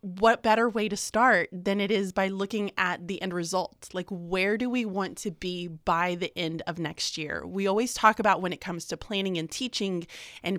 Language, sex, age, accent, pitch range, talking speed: English, female, 20-39, American, 180-225 Hz, 220 wpm